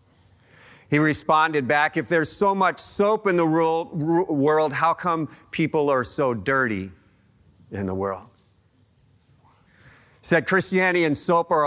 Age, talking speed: 50-69, 145 wpm